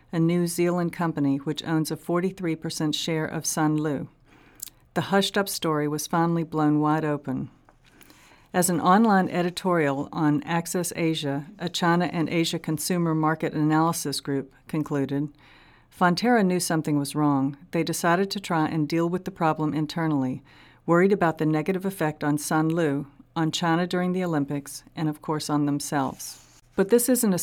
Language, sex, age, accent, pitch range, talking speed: English, female, 50-69, American, 150-170 Hz, 160 wpm